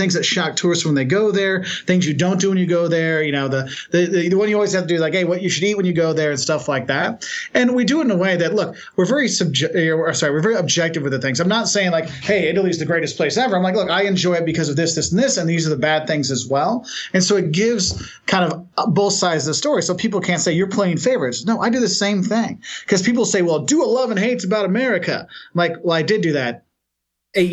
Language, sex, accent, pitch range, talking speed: English, male, American, 150-200 Hz, 295 wpm